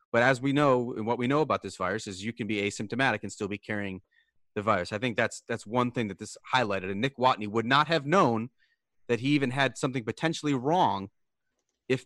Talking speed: 230 wpm